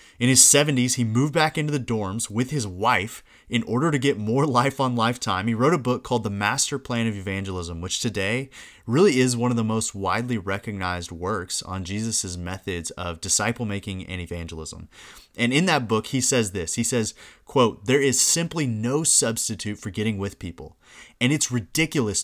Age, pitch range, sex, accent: 30-49, 95-125 Hz, male, American